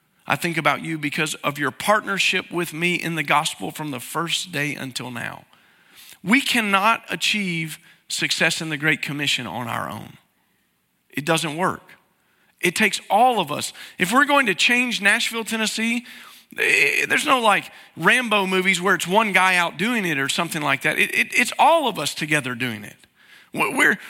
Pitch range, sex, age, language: 145-220 Hz, male, 40-59, English